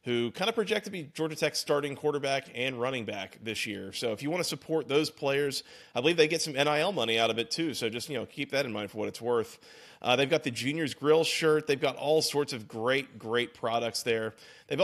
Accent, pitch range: American, 115-150 Hz